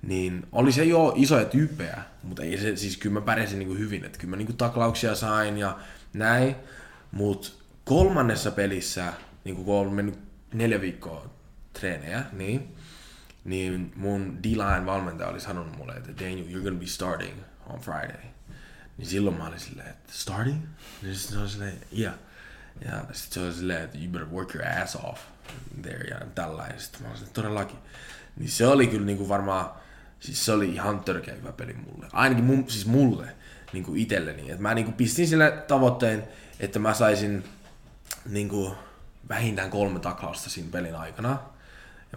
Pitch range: 95-115 Hz